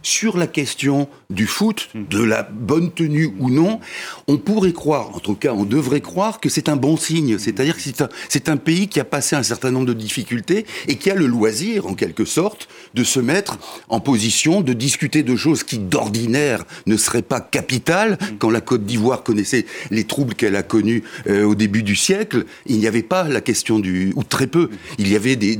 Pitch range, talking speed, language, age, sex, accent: 110-160 Hz, 215 wpm, French, 60-79, male, French